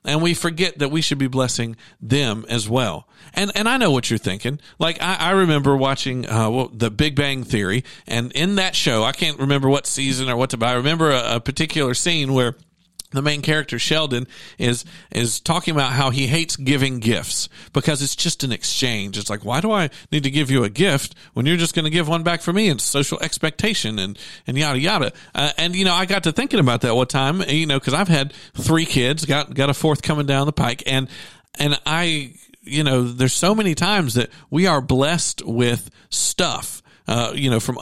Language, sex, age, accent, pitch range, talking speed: English, male, 50-69, American, 120-160 Hz, 225 wpm